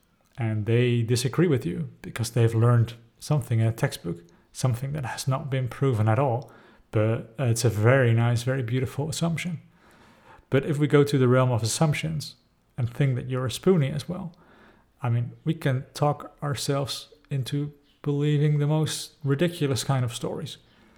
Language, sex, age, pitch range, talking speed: English, male, 40-59, 115-140 Hz, 170 wpm